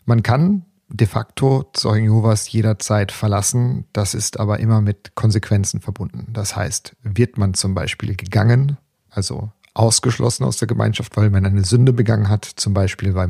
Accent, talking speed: German, 160 wpm